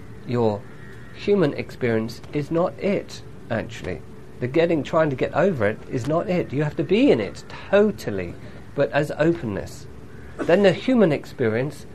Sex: male